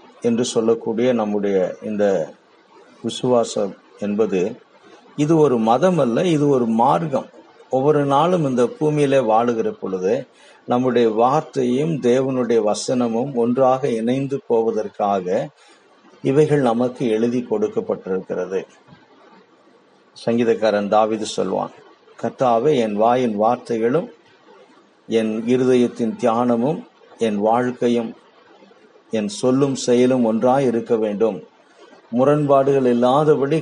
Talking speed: 90 wpm